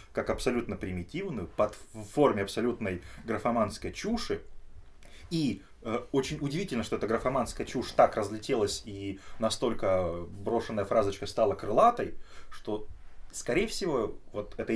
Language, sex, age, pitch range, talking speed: Russian, male, 20-39, 90-110 Hz, 120 wpm